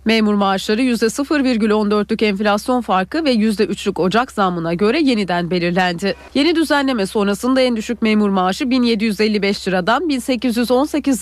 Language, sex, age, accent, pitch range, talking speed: Turkish, female, 40-59, native, 190-260 Hz, 120 wpm